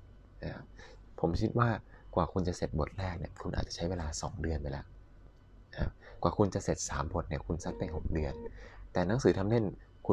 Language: Thai